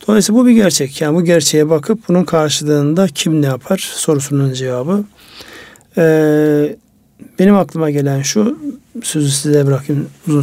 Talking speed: 140 wpm